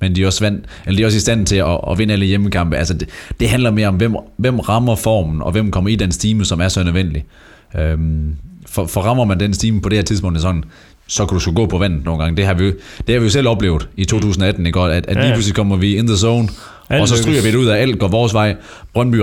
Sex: male